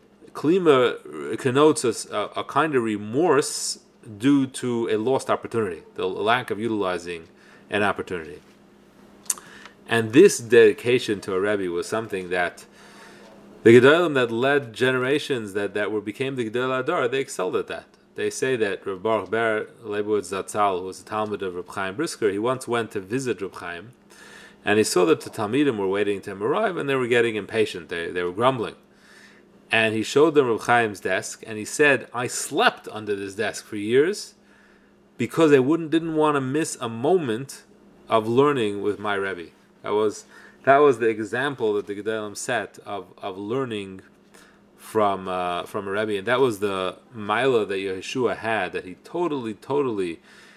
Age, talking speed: 30-49, 175 wpm